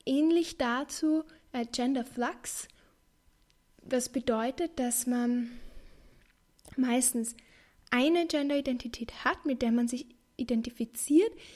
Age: 10-29